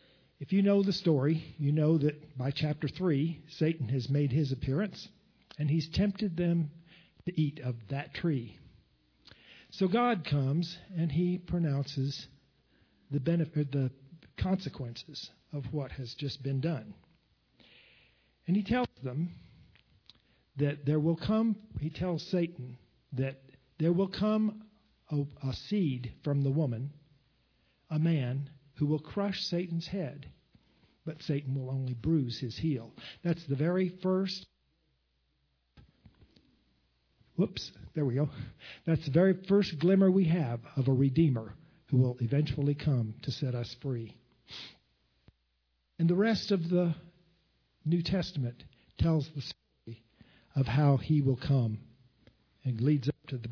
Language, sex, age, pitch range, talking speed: English, male, 50-69, 130-170 Hz, 135 wpm